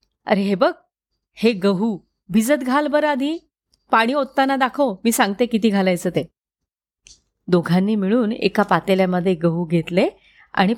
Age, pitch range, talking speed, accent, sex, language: 30-49, 195-325 Hz, 135 wpm, native, female, Marathi